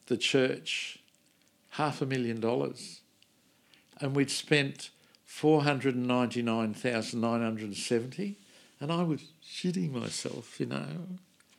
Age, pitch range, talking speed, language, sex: 60-79, 125-165 Hz, 135 wpm, English, male